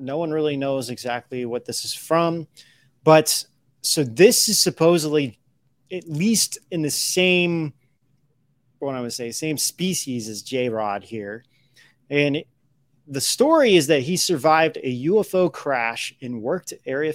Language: English